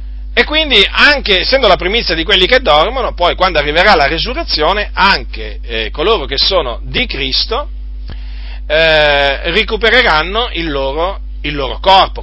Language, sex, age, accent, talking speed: Italian, male, 40-59, native, 135 wpm